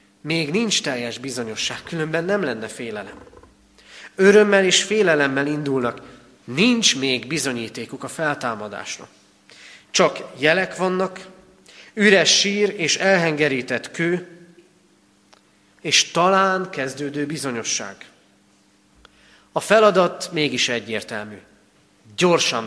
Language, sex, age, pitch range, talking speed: Hungarian, male, 30-49, 100-165 Hz, 90 wpm